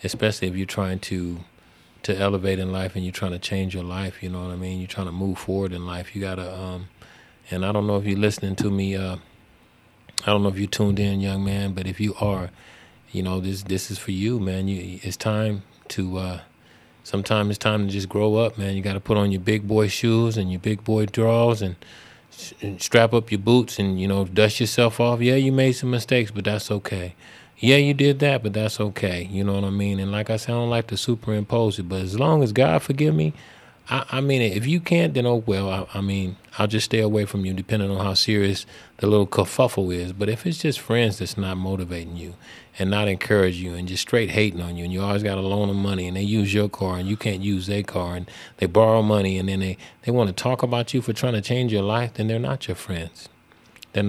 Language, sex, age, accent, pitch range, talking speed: English, male, 30-49, American, 95-110 Hz, 250 wpm